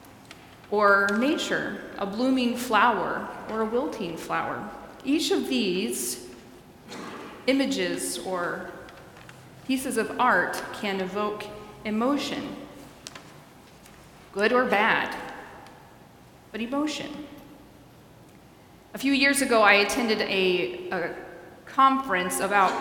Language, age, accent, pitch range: English, 30-49, American, 190-255 Hz